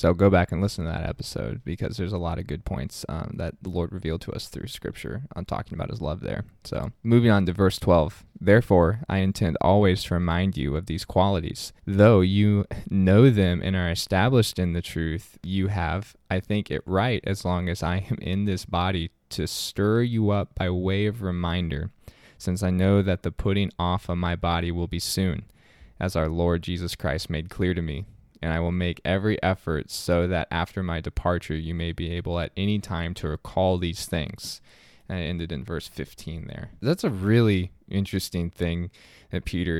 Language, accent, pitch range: English, American, 85-100 Hz